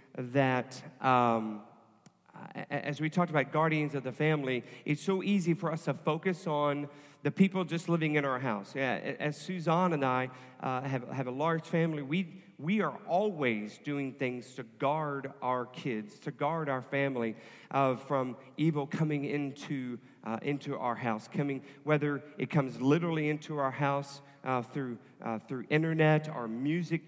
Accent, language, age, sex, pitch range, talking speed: American, English, 40-59, male, 135-165 Hz, 165 wpm